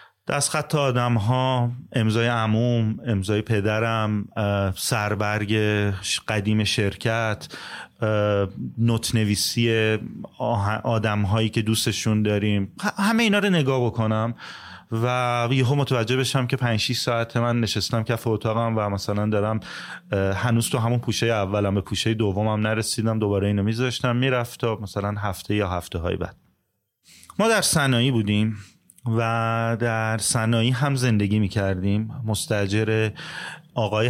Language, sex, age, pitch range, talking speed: Persian, male, 30-49, 105-135 Hz, 125 wpm